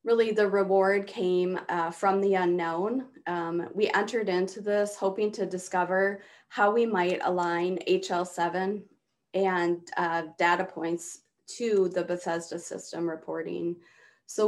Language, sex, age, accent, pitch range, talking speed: English, female, 20-39, American, 175-200 Hz, 130 wpm